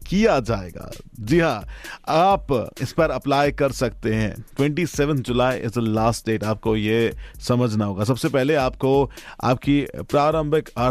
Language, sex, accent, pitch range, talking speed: Hindi, male, native, 110-140 Hz, 130 wpm